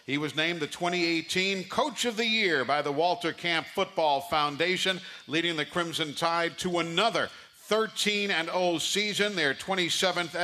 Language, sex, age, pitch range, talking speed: English, male, 50-69, 155-190 Hz, 150 wpm